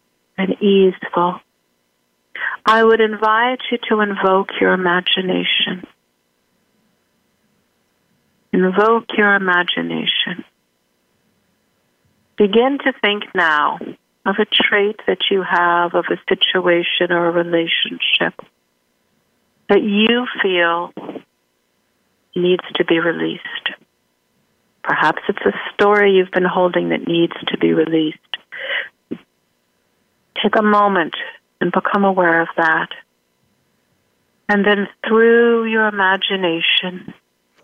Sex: female